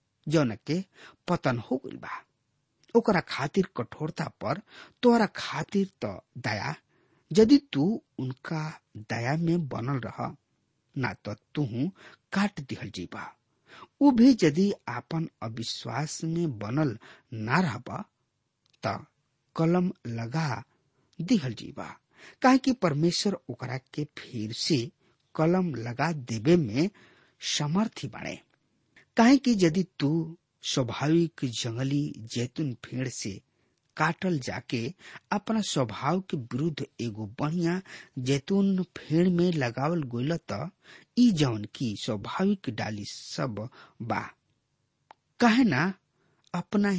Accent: Indian